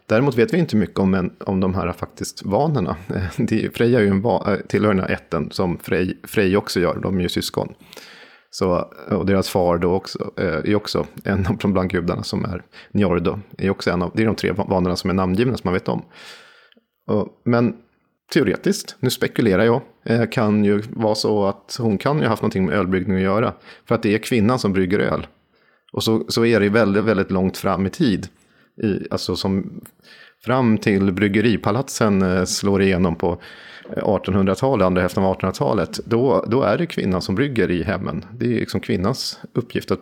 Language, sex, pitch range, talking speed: Swedish, male, 95-110 Hz, 190 wpm